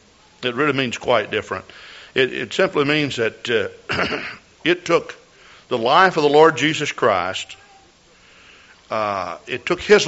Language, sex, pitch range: English, male, 125-160 Hz